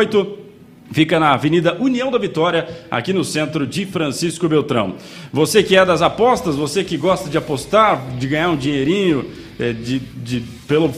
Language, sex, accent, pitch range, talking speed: Portuguese, male, Brazilian, 140-185 Hz, 150 wpm